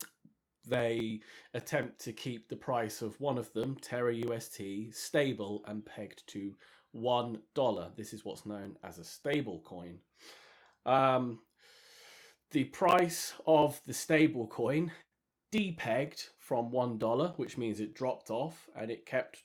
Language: English